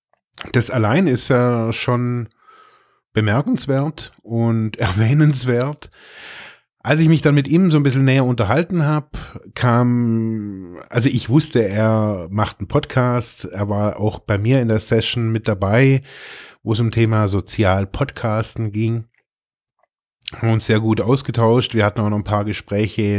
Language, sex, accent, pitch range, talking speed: German, male, German, 110-140 Hz, 145 wpm